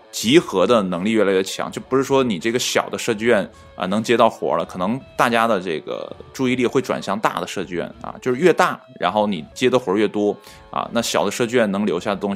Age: 20-39